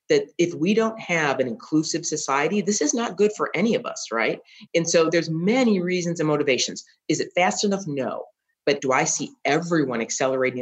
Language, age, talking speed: English, 40-59, 200 wpm